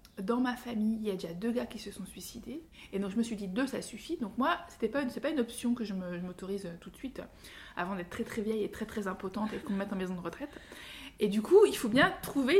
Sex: female